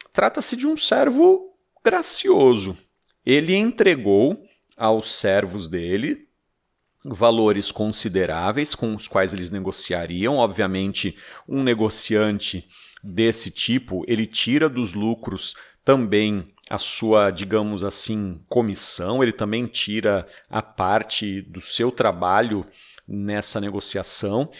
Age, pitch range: 40-59, 100-155 Hz